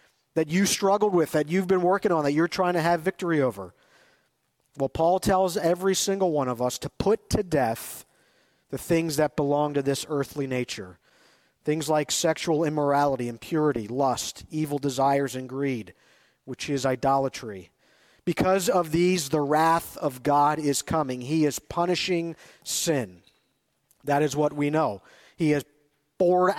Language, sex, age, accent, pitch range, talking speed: English, male, 50-69, American, 145-185 Hz, 160 wpm